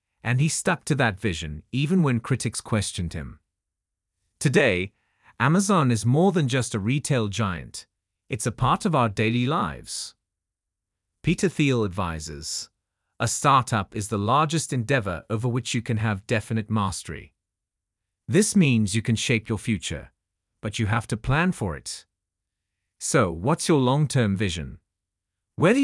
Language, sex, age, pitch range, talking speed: English, male, 30-49, 95-130 Hz, 145 wpm